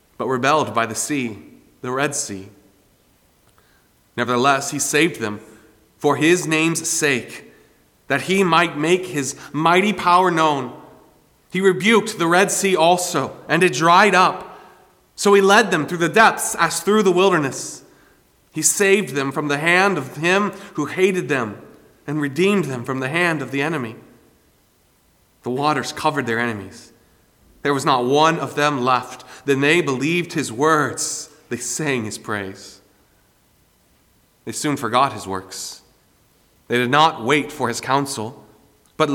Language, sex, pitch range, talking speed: English, male, 120-160 Hz, 150 wpm